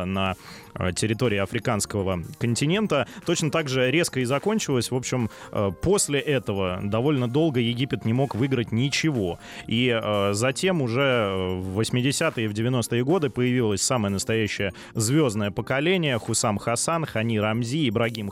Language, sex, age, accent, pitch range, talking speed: Russian, male, 20-39, native, 110-140 Hz, 130 wpm